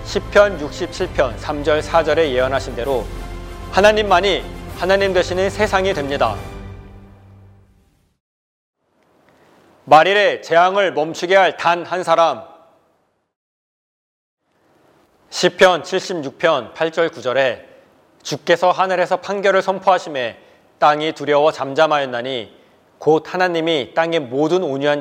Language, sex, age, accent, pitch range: Korean, male, 40-59, native, 140-185 Hz